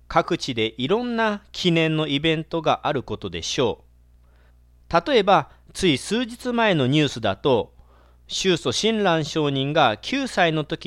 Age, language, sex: 40-59, Japanese, male